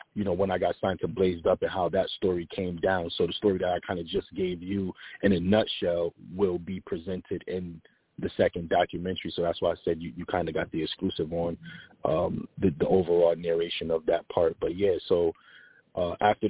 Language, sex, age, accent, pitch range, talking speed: English, male, 20-39, American, 85-95 Hz, 220 wpm